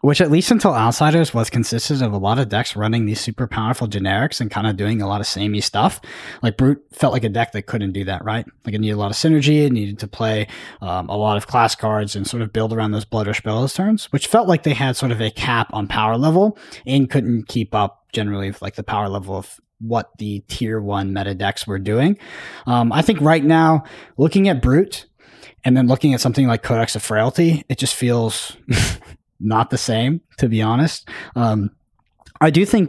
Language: English